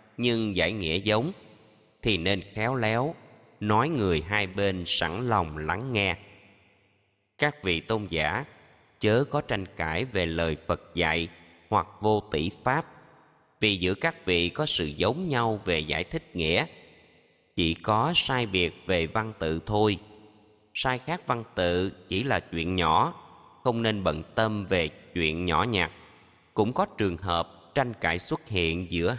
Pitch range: 85-115 Hz